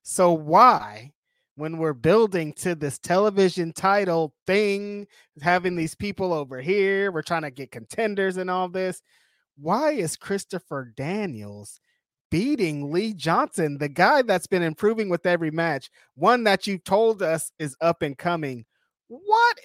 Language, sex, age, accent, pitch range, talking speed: English, male, 20-39, American, 145-195 Hz, 145 wpm